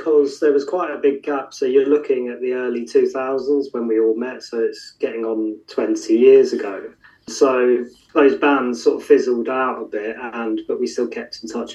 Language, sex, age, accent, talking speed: English, male, 20-39, British, 210 wpm